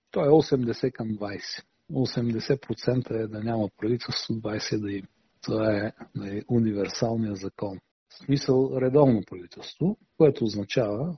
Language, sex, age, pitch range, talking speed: Bulgarian, male, 40-59, 105-135 Hz, 135 wpm